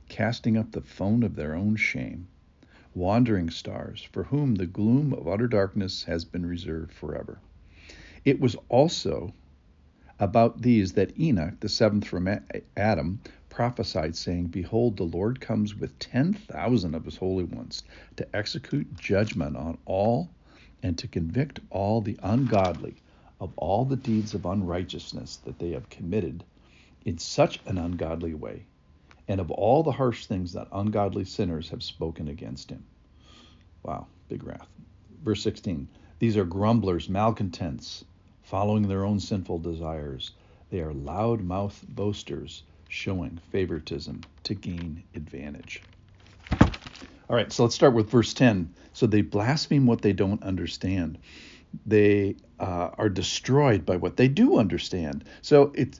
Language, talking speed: English, 145 wpm